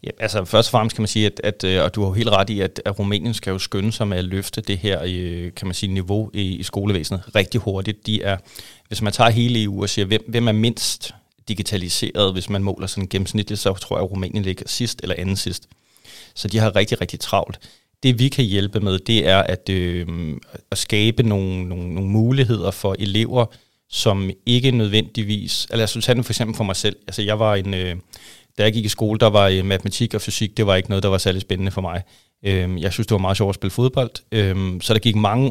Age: 30-49